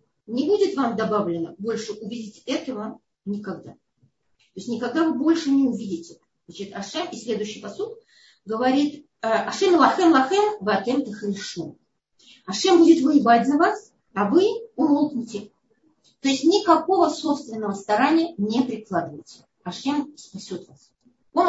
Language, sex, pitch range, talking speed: Russian, female, 205-330 Hz, 115 wpm